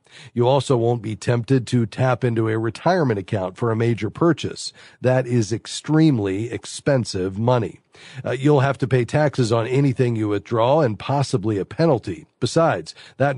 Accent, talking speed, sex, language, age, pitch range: American, 160 wpm, male, English, 40-59, 115-145 Hz